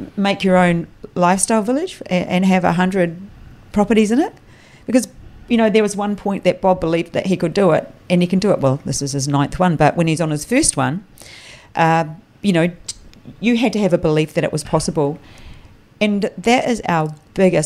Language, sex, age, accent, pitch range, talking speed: English, female, 40-59, Australian, 155-185 Hz, 215 wpm